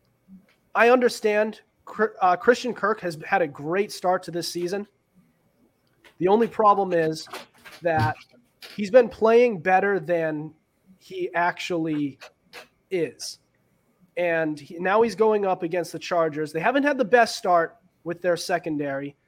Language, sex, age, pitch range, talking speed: English, male, 30-49, 160-195 Hz, 130 wpm